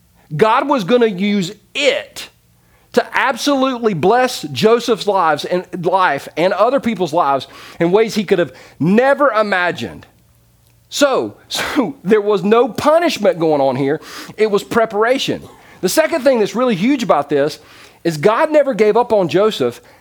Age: 40-59